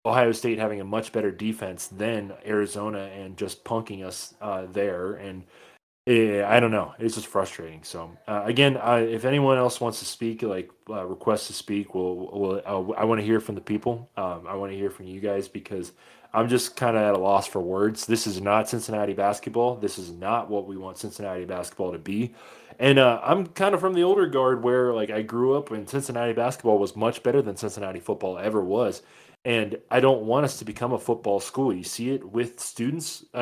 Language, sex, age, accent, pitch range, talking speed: English, male, 20-39, American, 100-120 Hz, 210 wpm